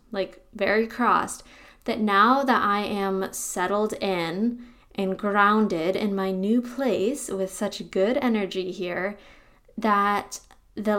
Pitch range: 190-225 Hz